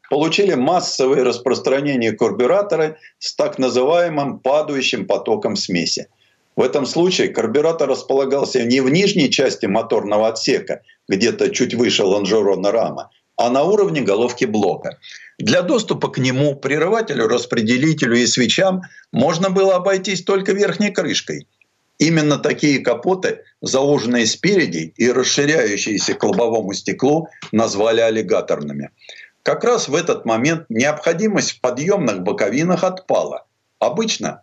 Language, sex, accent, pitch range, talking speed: Russian, male, native, 130-185 Hz, 120 wpm